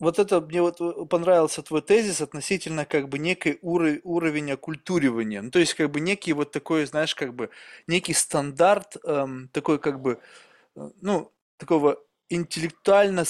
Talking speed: 155 wpm